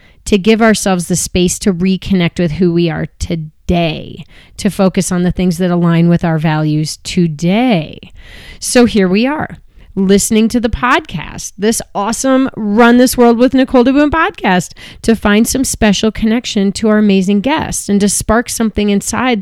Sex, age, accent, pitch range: female, 30-49, American, 180-230 Hz